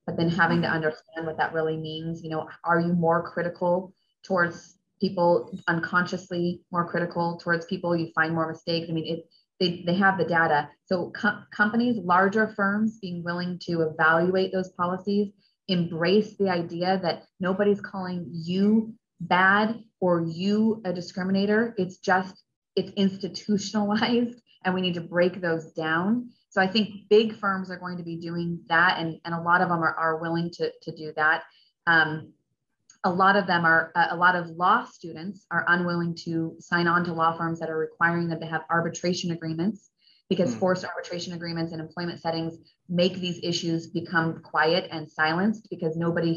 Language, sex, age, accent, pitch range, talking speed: English, female, 30-49, American, 165-190 Hz, 175 wpm